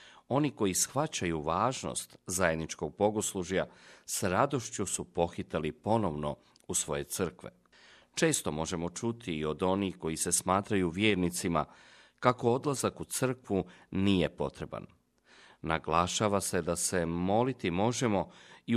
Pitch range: 85-115 Hz